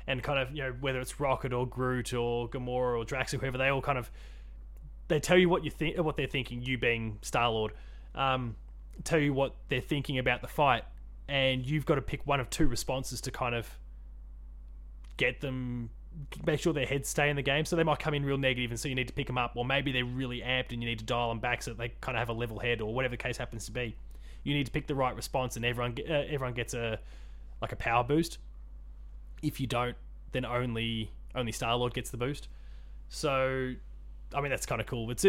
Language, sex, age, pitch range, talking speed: English, male, 20-39, 110-140 Hz, 245 wpm